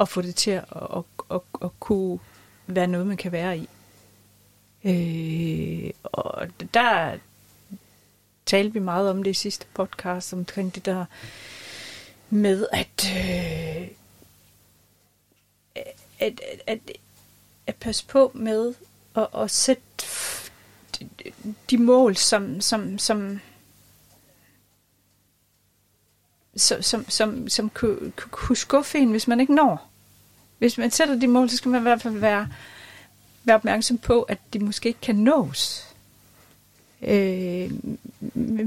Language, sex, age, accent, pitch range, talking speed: Danish, female, 30-49, native, 170-230 Hz, 135 wpm